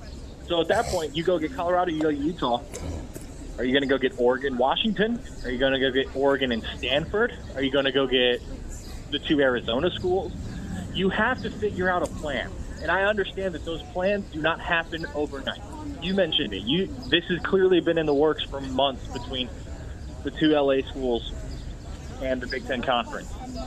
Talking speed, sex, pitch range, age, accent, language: 195 wpm, male, 120-170 Hz, 20-39, American, English